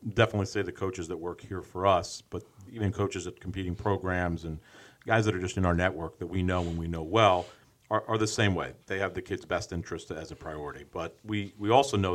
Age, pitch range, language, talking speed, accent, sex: 40-59, 95-115 Hz, English, 240 wpm, American, male